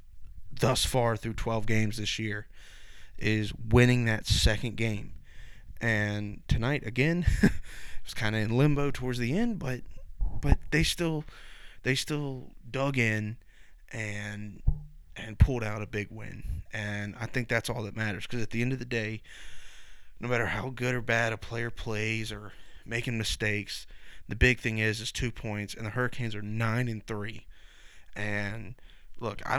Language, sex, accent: English, male, American